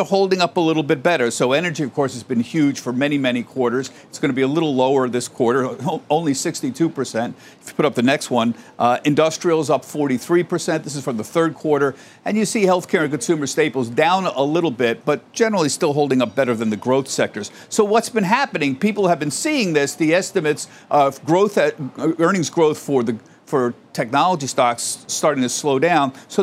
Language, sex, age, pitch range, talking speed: English, male, 50-69, 135-175 Hz, 210 wpm